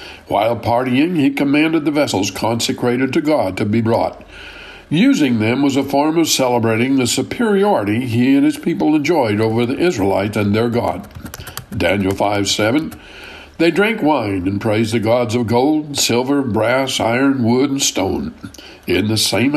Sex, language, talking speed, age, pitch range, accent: male, English, 165 wpm, 60-79, 115-155 Hz, American